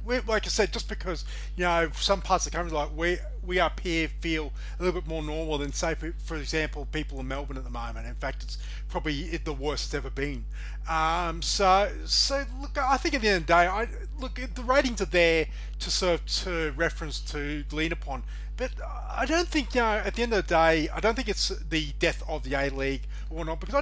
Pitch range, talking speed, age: 145-195 Hz, 230 wpm, 30-49